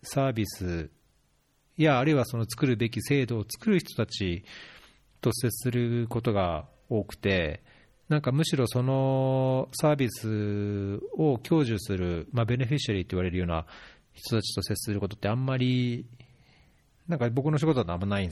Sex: male